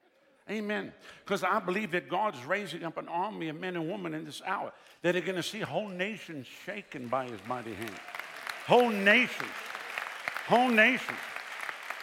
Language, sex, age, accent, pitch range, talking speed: English, male, 60-79, American, 185-230 Hz, 165 wpm